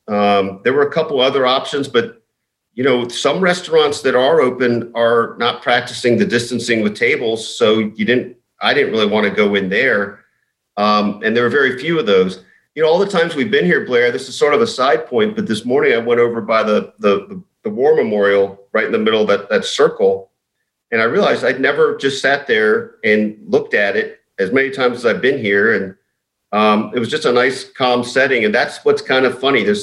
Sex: male